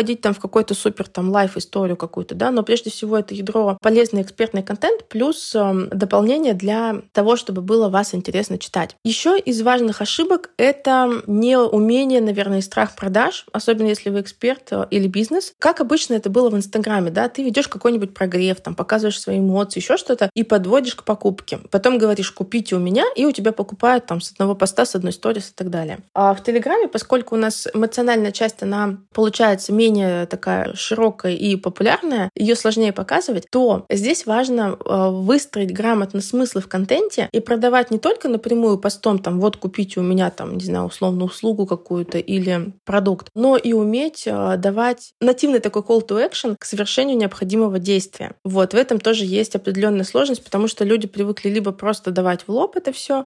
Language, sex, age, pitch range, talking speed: Russian, female, 20-39, 195-240 Hz, 175 wpm